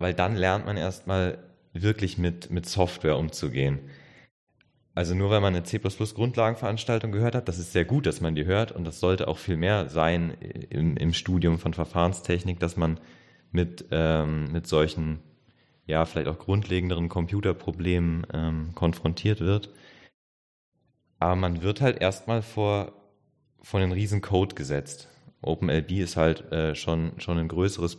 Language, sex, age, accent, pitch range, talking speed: German, male, 30-49, German, 80-100 Hz, 150 wpm